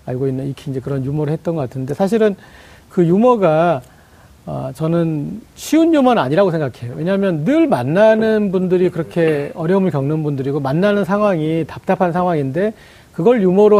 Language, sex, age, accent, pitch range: Korean, male, 40-59, native, 140-185 Hz